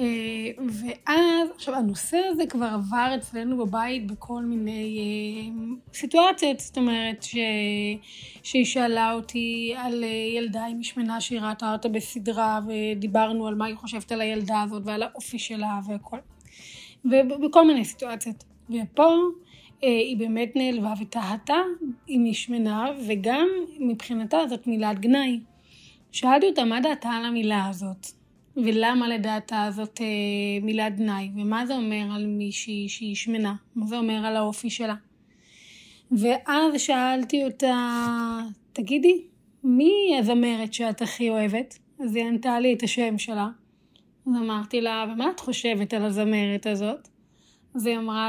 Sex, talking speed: female, 130 wpm